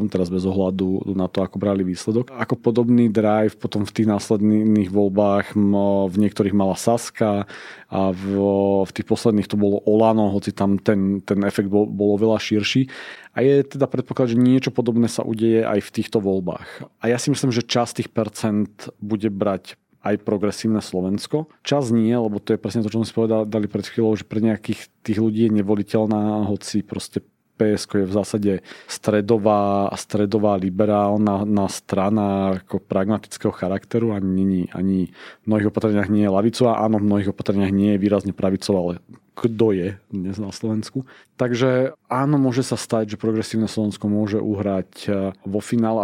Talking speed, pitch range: 170 wpm, 100-115 Hz